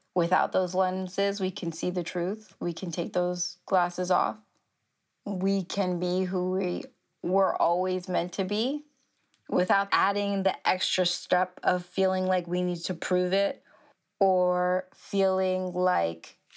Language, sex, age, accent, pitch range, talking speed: English, female, 20-39, American, 180-215 Hz, 145 wpm